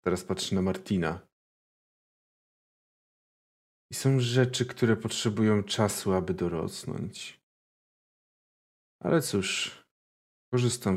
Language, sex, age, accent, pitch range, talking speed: Polish, male, 40-59, native, 90-110 Hz, 80 wpm